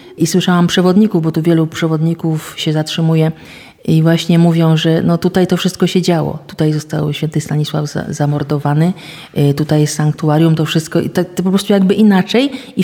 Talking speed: 180 wpm